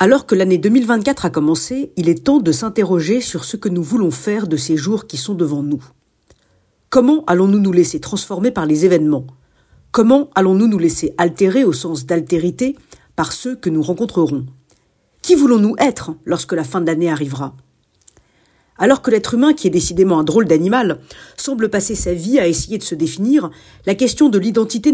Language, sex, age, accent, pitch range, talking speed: French, female, 50-69, French, 160-225 Hz, 190 wpm